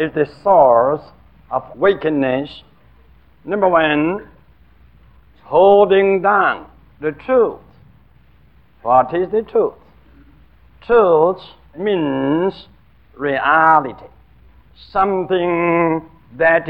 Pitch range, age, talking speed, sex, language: 120-190 Hz, 60-79, 70 wpm, male, English